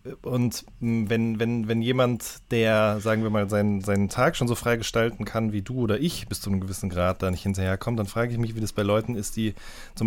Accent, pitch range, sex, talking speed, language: German, 100-125 Hz, male, 240 wpm, German